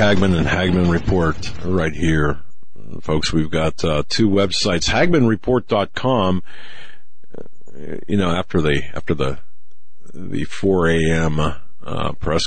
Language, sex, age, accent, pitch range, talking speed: English, male, 50-69, American, 75-95 Hz, 110 wpm